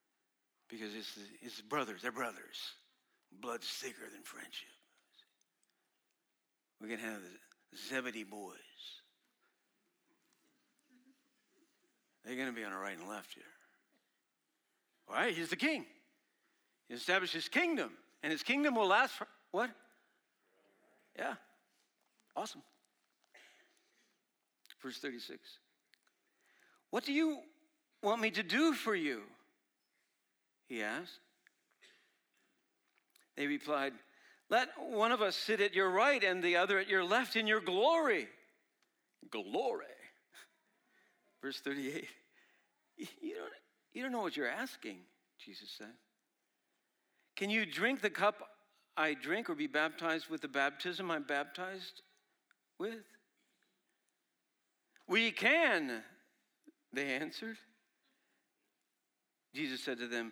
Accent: American